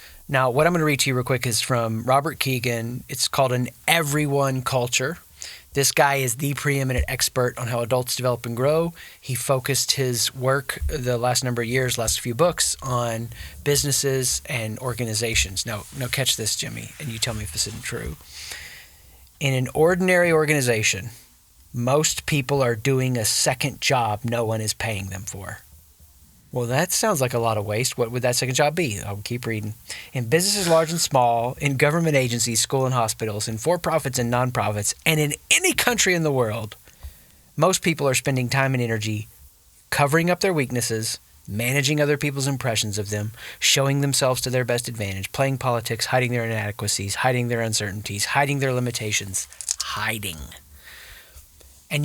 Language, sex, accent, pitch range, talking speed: English, male, American, 110-140 Hz, 175 wpm